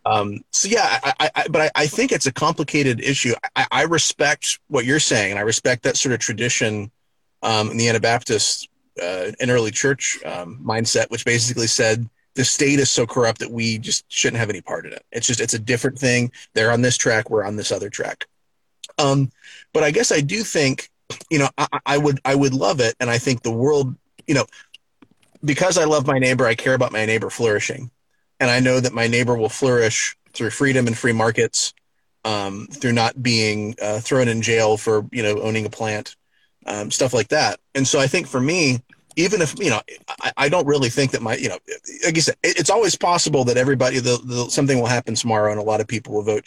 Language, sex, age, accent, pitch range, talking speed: English, male, 30-49, American, 110-140 Hz, 215 wpm